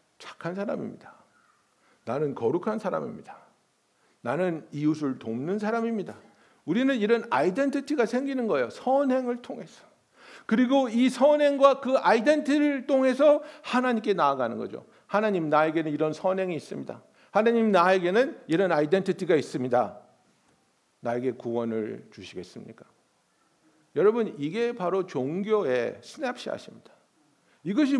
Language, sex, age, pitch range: Korean, male, 60-79, 195-270 Hz